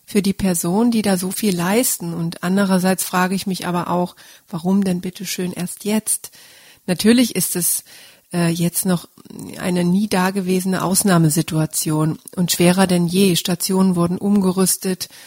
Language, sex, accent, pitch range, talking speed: German, female, German, 180-200 Hz, 150 wpm